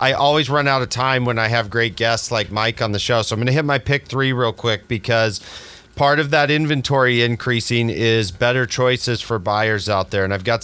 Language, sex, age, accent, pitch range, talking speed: English, male, 40-59, American, 110-135 Hz, 230 wpm